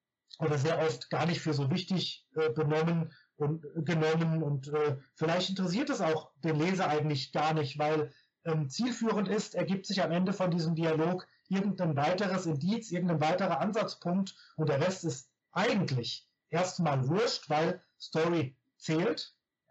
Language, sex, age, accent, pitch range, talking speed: German, male, 30-49, German, 150-190 Hz, 145 wpm